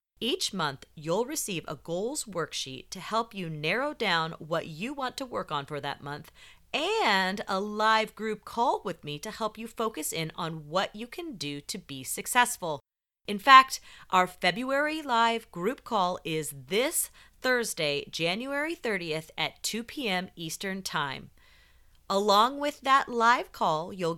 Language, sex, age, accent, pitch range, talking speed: English, female, 30-49, American, 165-250 Hz, 160 wpm